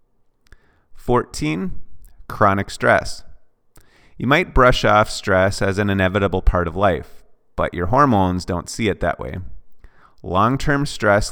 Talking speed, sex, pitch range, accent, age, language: 125 wpm, male, 90-105 Hz, American, 30-49, English